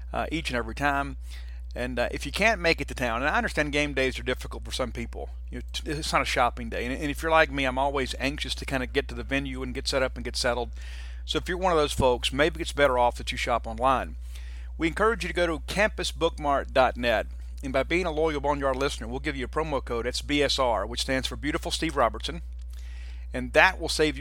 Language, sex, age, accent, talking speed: English, male, 40-59, American, 245 wpm